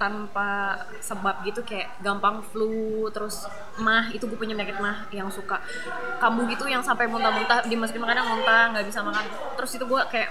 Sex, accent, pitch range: female, native, 205-245 Hz